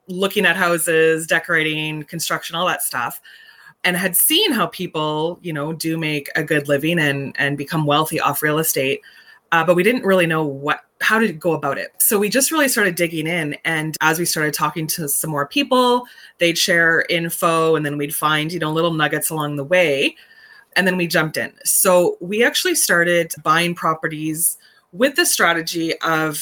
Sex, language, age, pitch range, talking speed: female, English, 20-39, 150-190 Hz, 190 wpm